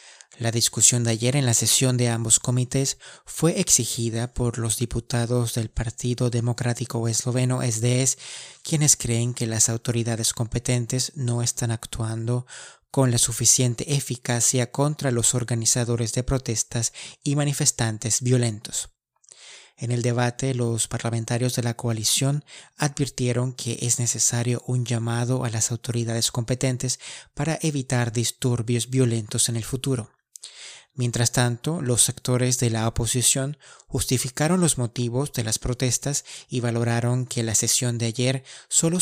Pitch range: 115-130 Hz